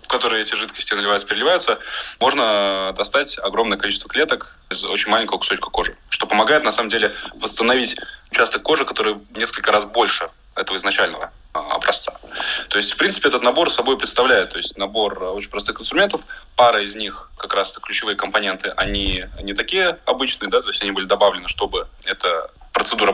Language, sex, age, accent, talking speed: Russian, male, 20-39, native, 170 wpm